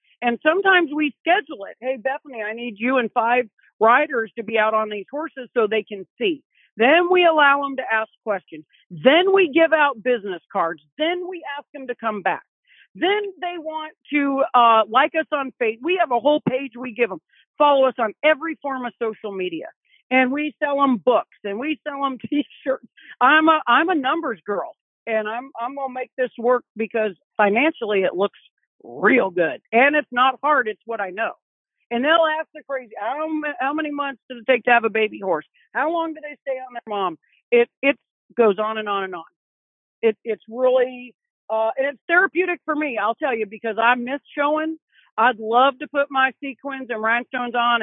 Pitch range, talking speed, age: 225-295 Hz, 205 wpm, 50-69